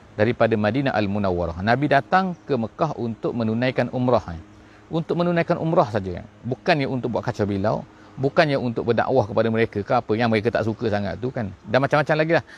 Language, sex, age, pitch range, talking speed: English, male, 40-59, 105-140 Hz, 175 wpm